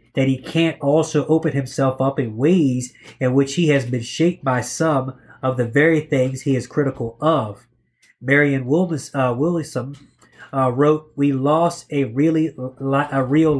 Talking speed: 170 wpm